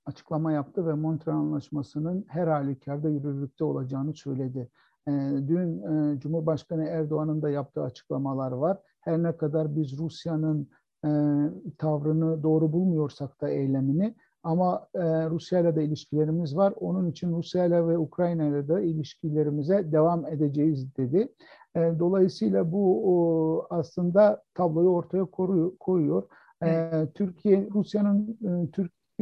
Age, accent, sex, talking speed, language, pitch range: 60-79, native, male, 125 wpm, Turkish, 155-190 Hz